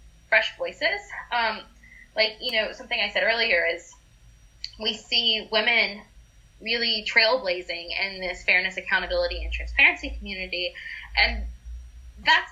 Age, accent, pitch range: 10-29, American, 175-230 Hz